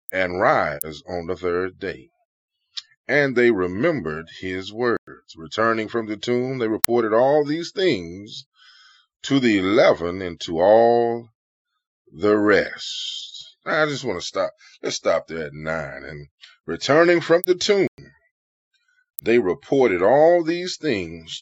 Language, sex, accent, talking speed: English, male, American, 135 wpm